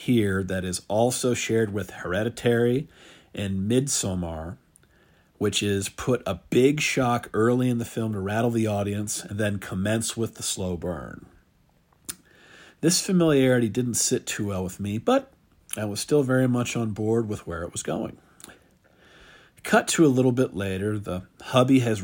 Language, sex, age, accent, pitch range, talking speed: English, male, 50-69, American, 100-125 Hz, 165 wpm